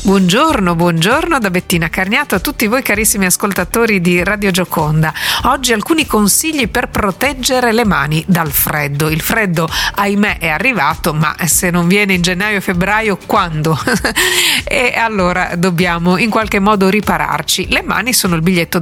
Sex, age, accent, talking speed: female, 50-69, native, 155 wpm